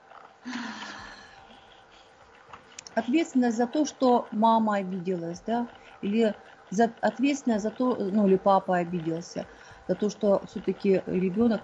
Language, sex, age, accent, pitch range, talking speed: Russian, female, 40-59, native, 190-250 Hz, 110 wpm